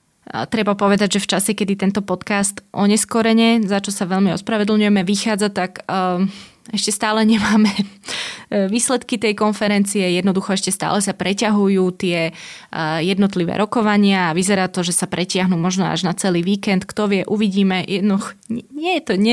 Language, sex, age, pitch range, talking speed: Slovak, female, 20-39, 180-210 Hz, 150 wpm